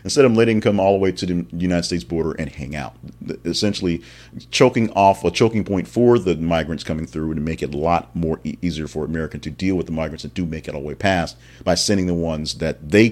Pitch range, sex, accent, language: 85-120 Hz, male, American, English